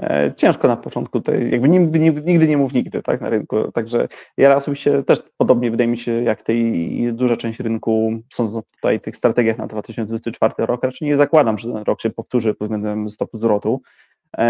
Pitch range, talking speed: 115-130 Hz, 195 wpm